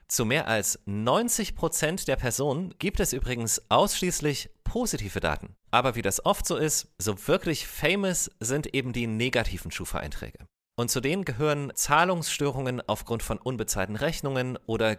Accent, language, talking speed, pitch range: German, German, 145 wpm, 110-155 Hz